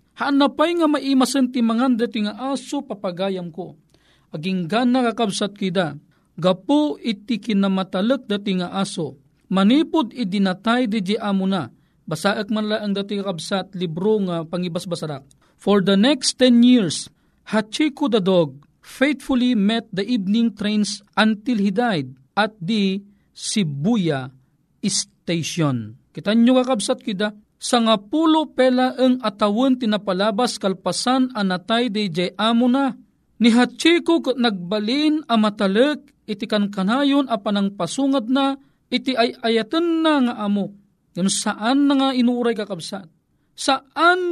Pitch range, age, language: 190-250 Hz, 40-59, Filipino